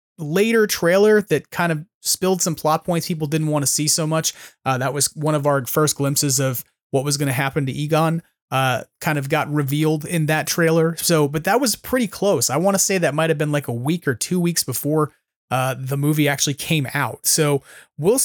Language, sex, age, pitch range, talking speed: English, male, 30-49, 145-180 Hz, 225 wpm